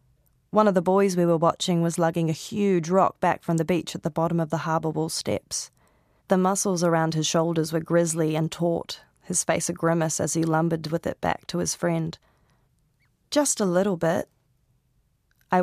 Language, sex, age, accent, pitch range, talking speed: English, female, 20-39, Australian, 145-185 Hz, 195 wpm